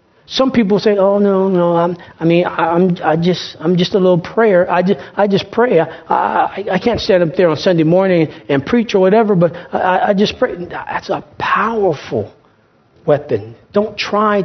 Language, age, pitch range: English, 40-59, 145-205 Hz